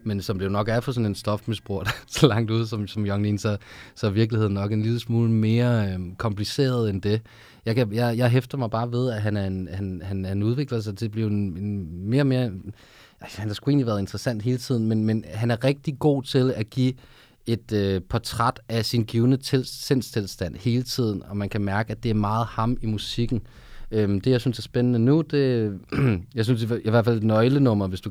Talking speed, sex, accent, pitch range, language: 235 wpm, male, native, 100-120 Hz, Danish